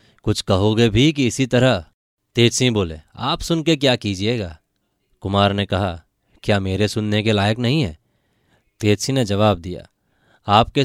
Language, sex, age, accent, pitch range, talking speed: Hindi, male, 20-39, native, 100-120 Hz, 150 wpm